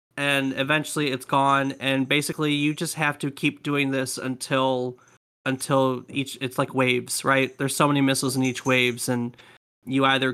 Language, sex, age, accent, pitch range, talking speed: English, male, 30-49, American, 135-160 Hz, 175 wpm